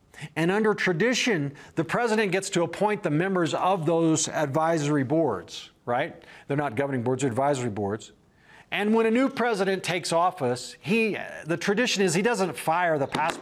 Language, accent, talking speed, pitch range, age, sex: English, American, 170 wpm, 145-195 Hz, 40-59, male